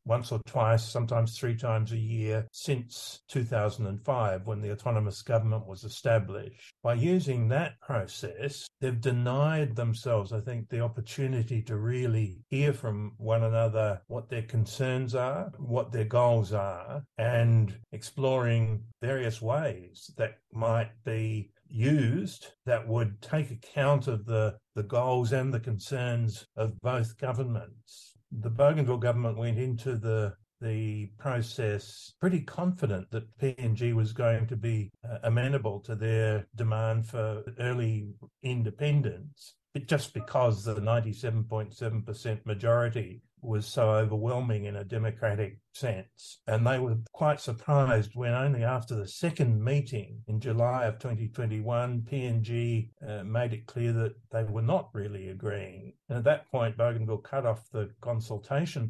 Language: English